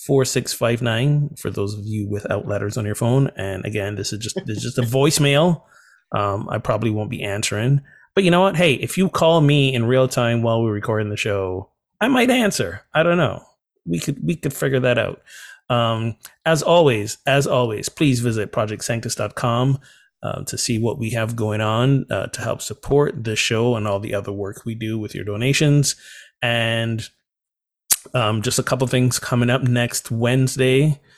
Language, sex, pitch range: English, male, 105-130 Hz